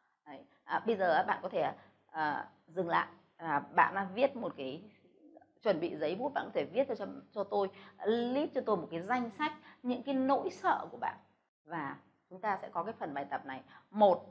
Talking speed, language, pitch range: 210 wpm, Vietnamese, 185-250 Hz